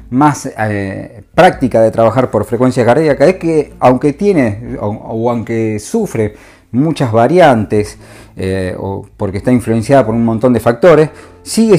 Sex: male